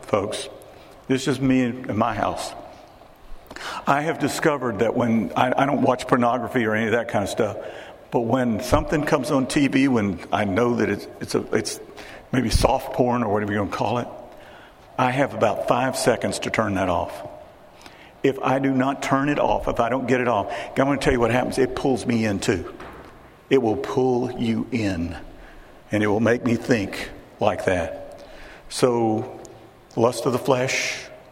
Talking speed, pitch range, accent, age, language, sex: 190 wpm, 115-130 Hz, American, 50-69, English, male